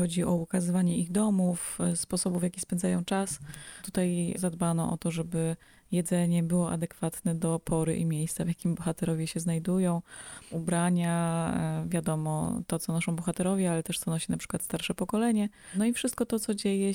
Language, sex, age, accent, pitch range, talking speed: Polish, female, 20-39, native, 165-185 Hz, 165 wpm